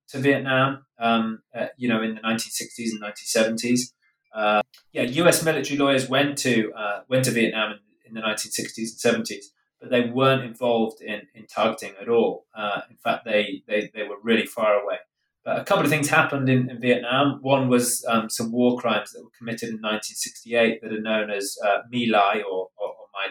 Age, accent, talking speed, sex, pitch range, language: 20-39, British, 200 wpm, male, 110-130 Hz, English